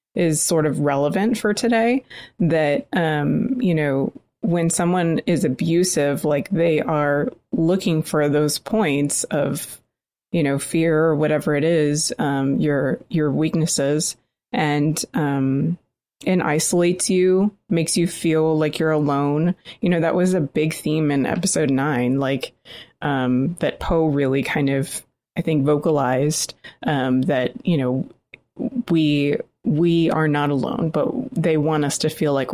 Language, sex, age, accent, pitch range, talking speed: English, female, 20-39, American, 145-180 Hz, 150 wpm